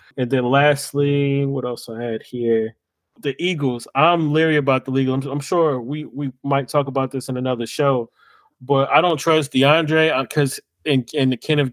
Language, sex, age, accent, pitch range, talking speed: English, male, 20-39, American, 120-145 Hz, 190 wpm